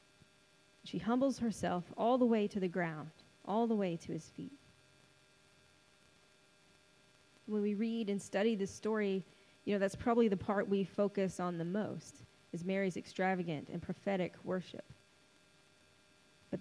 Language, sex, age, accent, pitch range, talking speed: English, female, 30-49, American, 185-230 Hz, 145 wpm